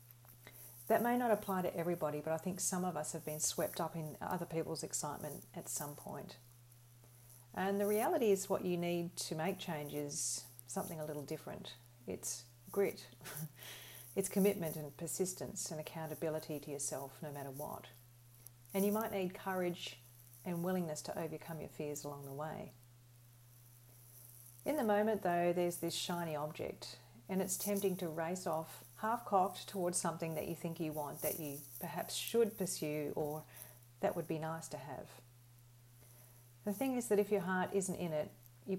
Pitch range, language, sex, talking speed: 120-185 Hz, English, female, 170 wpm